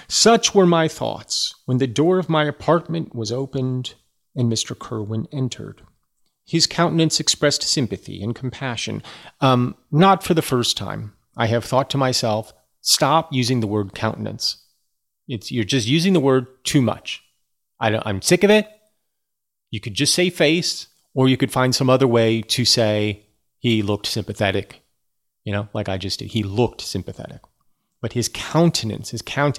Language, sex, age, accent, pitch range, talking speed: English, male, 30-49, American, 110-145 Hz, 170 wpm